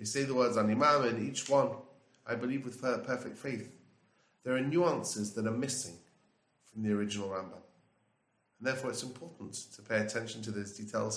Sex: male